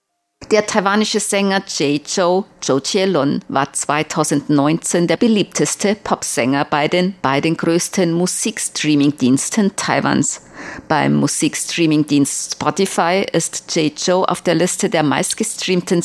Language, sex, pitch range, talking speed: German, female, 145-190 Hz, 110 wpm